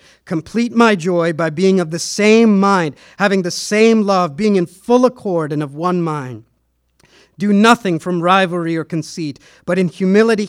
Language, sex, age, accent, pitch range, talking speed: English, male, 50-69, American, 150-200 Hz, 170 wpm